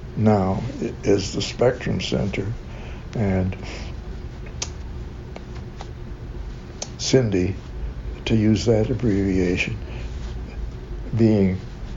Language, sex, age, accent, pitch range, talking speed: English, male, 60-79, American, 85-110 Hz, 60 wpm